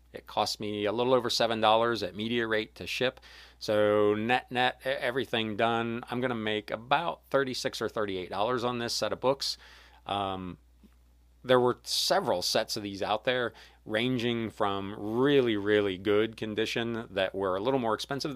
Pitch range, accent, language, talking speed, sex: 90-115 Hz, American, English, 165 wpm, male